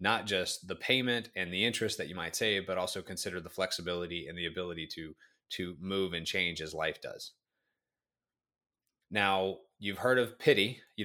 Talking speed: 180 wpm